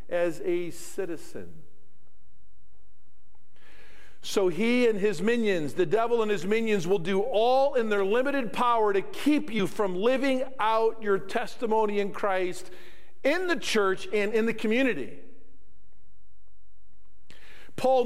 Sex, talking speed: male, 125 wpm